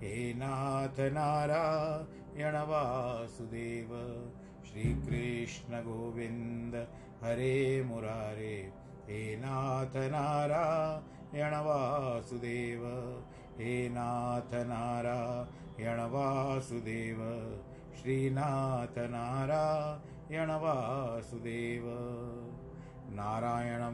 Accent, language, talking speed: native, Hindi, 50 wpm